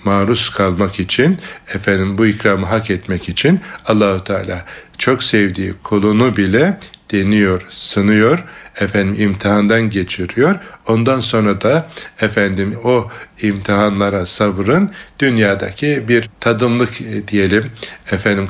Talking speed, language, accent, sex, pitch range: 105 wpm, Turkish, native, male, 100-115 Hz